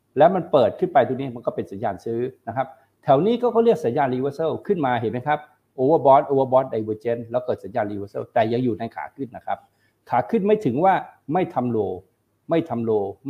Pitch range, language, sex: 115-155 Hz, Thai, male